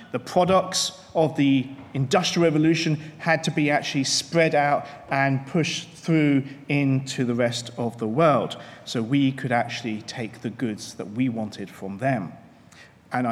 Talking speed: 155 wpm